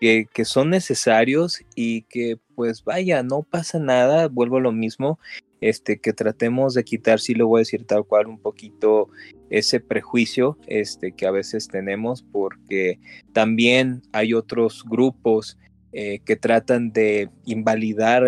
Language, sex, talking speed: Spanish, male, 155 wpm